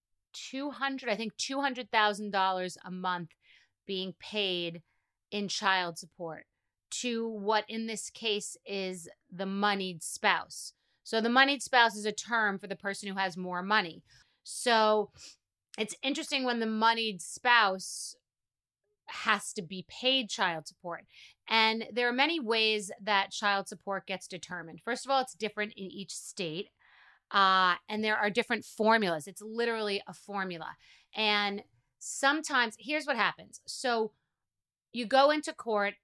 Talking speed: 145 wpm